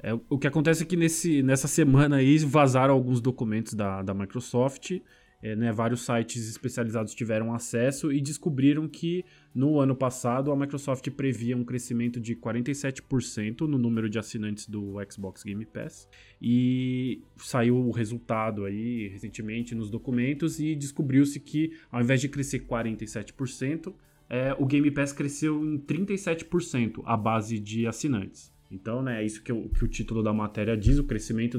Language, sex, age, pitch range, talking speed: Portuguese, male, 20-39, 115-145 Hz, 160 wpm